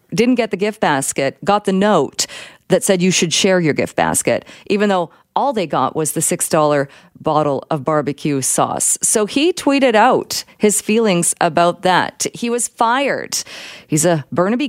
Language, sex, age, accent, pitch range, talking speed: English, female, 40-59, American, 150-200 Hz, 170 wpm